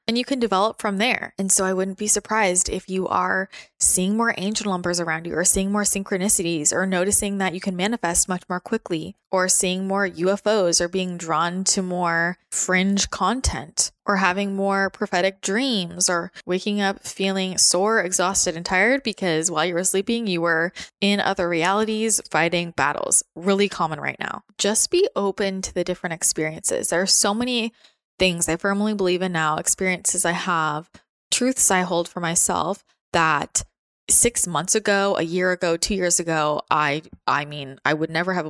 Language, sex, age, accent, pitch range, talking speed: English, female, 20-39, American, 170-200 Hz, 180 wpm